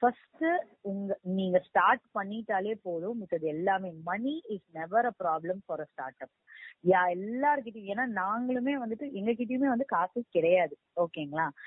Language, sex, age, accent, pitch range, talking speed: Tamil, female, 20-39, native, 170-235 Hz, 130 wpm